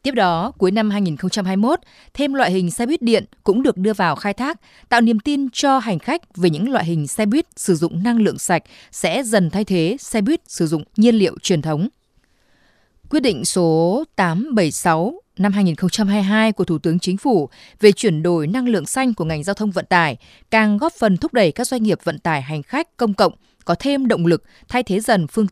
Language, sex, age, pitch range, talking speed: Vietnamese, female, 20-39, 175-235 Hz, 215 wpm